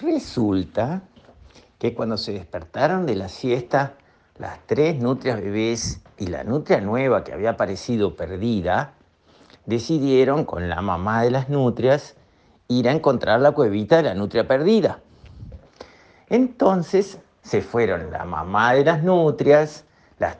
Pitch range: 115-190 Hz